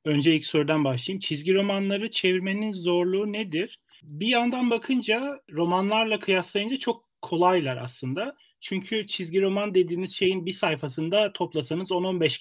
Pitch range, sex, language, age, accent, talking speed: 150-190 Hz, male, Turkish, 40-59, native, 125 wpm